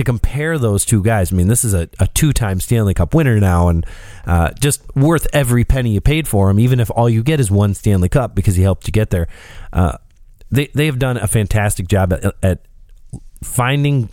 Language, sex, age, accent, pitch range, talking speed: English, male, 30-49, American, 105-145 Hz, 220 wpm